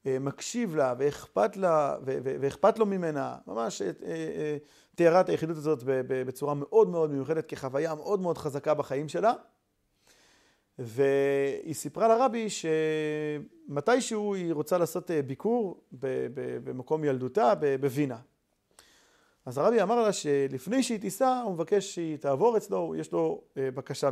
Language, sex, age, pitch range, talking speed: Hebrew, male, 40-59, 130-175 Hz, 120 wpm